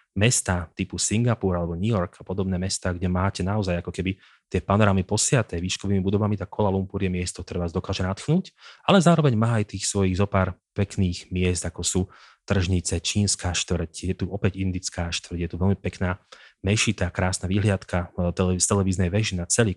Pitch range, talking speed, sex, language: 95-105 Hz, 180 wpm, male, Slovak